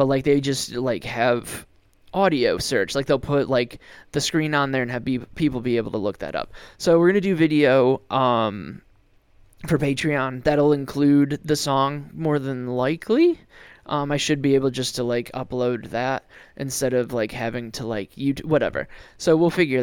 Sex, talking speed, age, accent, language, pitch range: male, 190 wpm, 20-39, American, English, 125-155 Hz